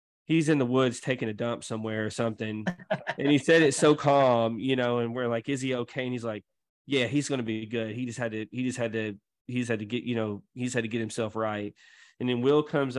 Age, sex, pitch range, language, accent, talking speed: 20-39, male, 115-140 Hz, English, American, 265 wpm